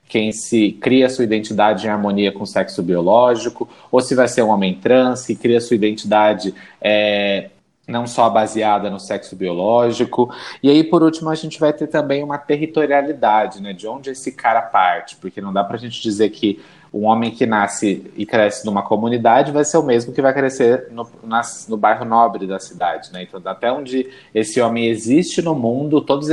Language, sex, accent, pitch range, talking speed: Portuguese, male, Brazilian, 110-135 Hz, 195 wpm